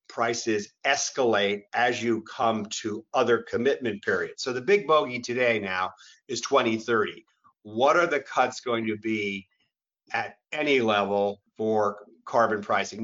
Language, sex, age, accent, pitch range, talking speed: English, male, 50-69, American, 105-120 Hz, 140 wpm